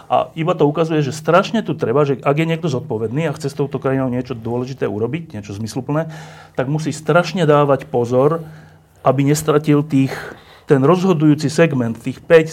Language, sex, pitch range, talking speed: Slovak, male, 120-155 Hz, 175 wpm